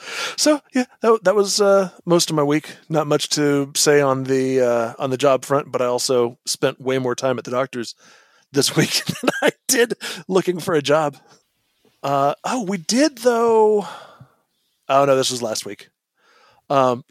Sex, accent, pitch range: male, American, 130-175 Hz